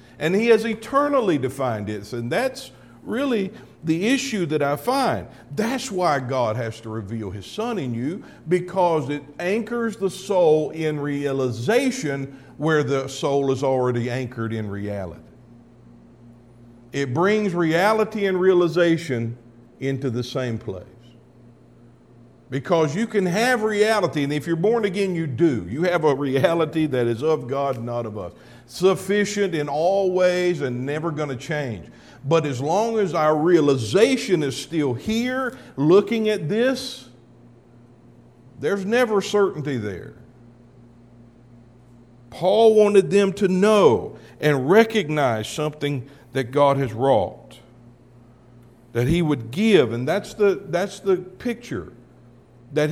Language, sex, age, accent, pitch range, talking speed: English, male, 50-69, American, 120-190 Hz, 135 wpm